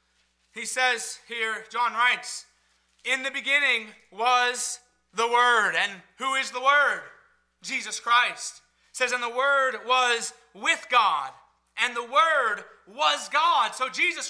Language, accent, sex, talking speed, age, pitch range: English, American, male, 135 wpm, 30-49, 230-285 Hz